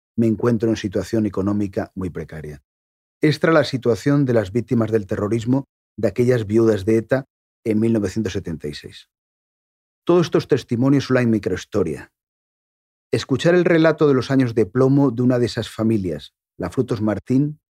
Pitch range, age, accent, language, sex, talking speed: 95-120 Hz, 40-59, Spanish, Spanish, male, 150 wpm